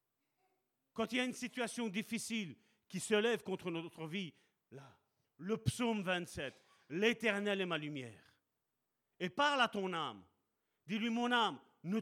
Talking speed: 150 wpm